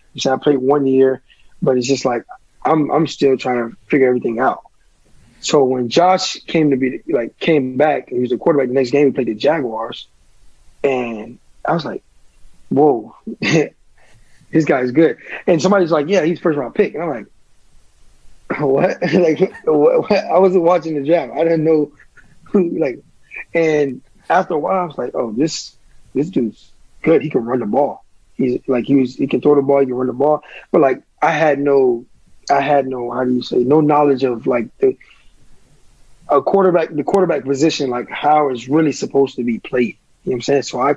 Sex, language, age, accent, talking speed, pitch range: male, English, 20-39, American, 200 wpm, 130-160 Hz